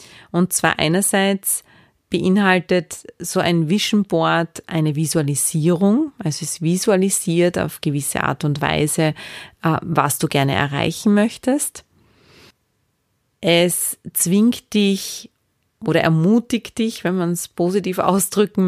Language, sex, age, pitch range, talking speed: German, female, 30-49, 165-195 Hz, 110 wpm